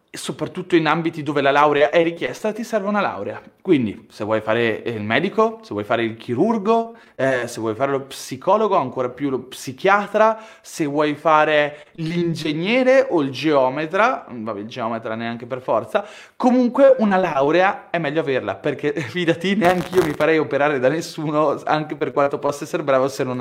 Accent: native